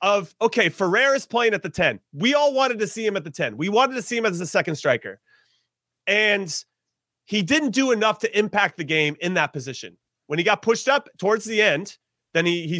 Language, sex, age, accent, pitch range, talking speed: English, male, 30-49, American, 180-245 Hz, 230 wpm